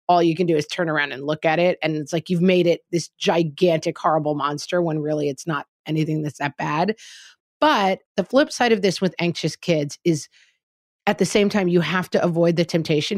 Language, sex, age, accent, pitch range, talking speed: English, female, 30-49, American, 170-220 Hz, 225 wpm